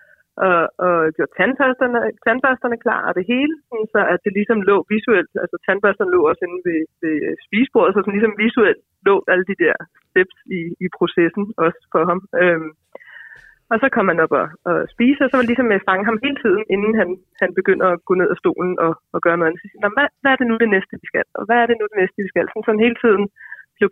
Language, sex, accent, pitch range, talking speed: Danish, female, native, 175-235 Hz, 245 wpm